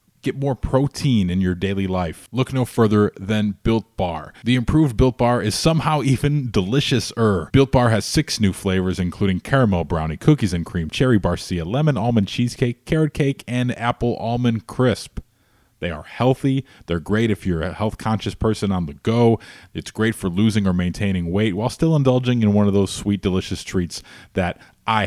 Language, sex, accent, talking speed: English, male, American, 180 wpm